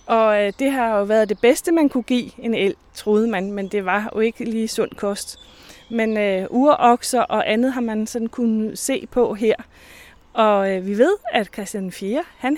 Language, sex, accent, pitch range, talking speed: Danish, female, native, 190-235 Hz, 190 wpm